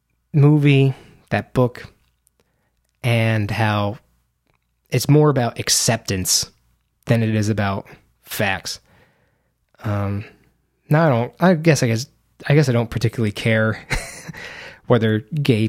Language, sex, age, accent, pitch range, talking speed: English, male, 20-39, American, 100-145 Hz, 115 wpm